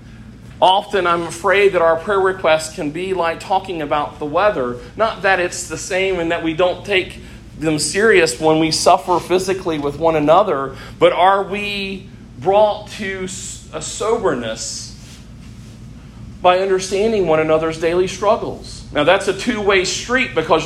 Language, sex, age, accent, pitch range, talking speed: English, male, 40-59, American, 130-185 Hz, 150 wpm